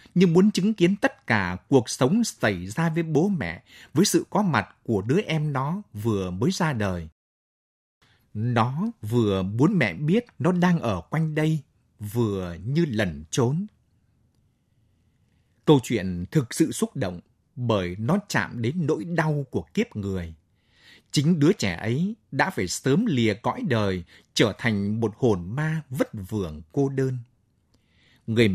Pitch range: 105-170 Hz